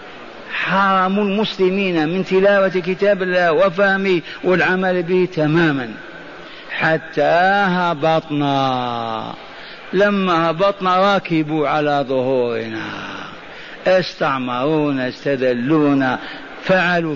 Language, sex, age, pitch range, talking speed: Arabic, male, 50-69, 175-240 Hz, 70 wpm